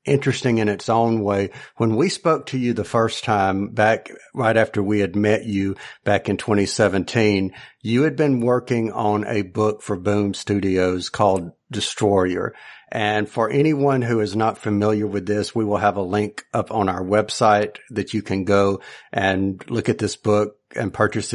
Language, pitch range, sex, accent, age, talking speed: English, 105-125 Hz, male, American, 50-69, 180 wpm